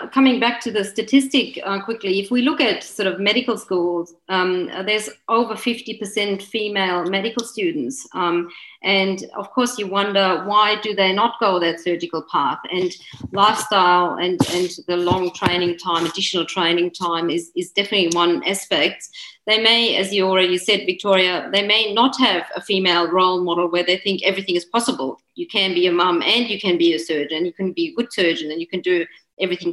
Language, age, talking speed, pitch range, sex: English, 40-59, 190 wpm, 175-215 Hz, female